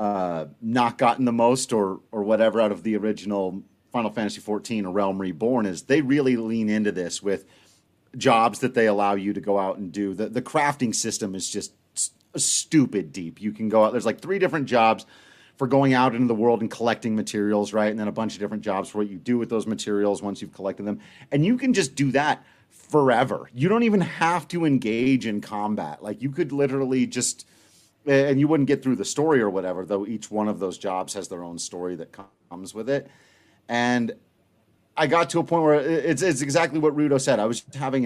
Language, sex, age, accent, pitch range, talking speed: English, male, 30-49, American, 105-140 Hz, 220 wpm